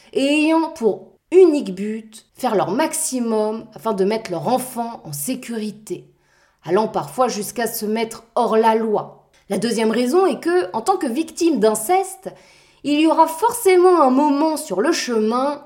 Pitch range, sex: 220-295 Hz, female